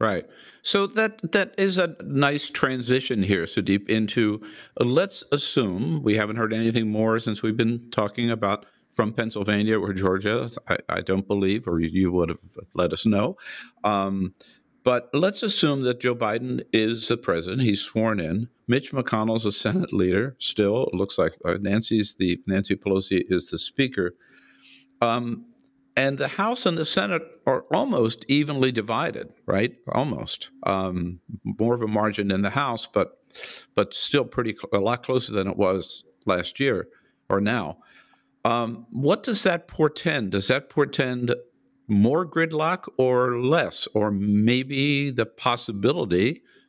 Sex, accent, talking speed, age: male, American, 155 wpm, 50-69